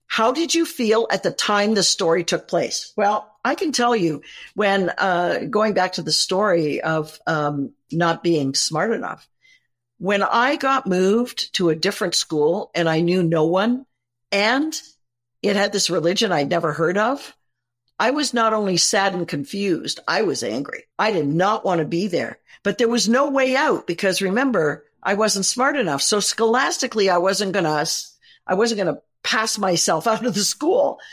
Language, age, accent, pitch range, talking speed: English, 50-69, American, 165-230 Hz, 185 wpm